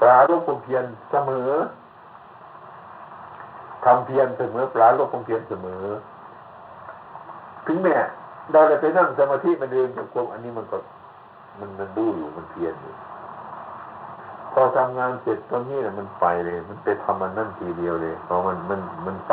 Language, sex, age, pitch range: Thai, male, 60-79, 95-130 Hz